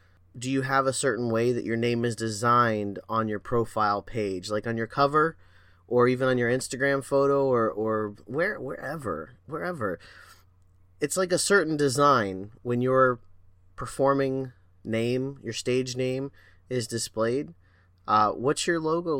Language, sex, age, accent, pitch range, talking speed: English, male, 30-49, American, 105-145 Hz, 150 wpm